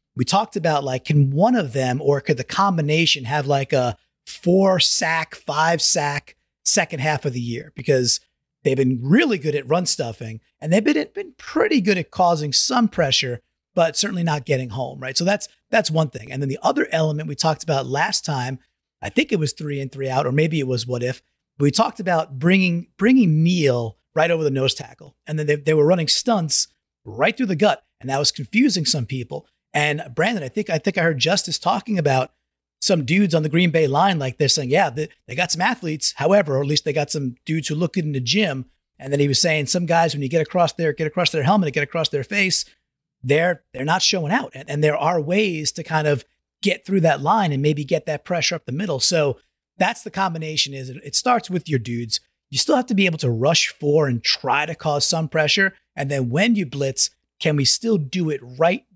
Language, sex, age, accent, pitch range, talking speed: English, male, 30-49, American, 140-180 Hz, 235 wpm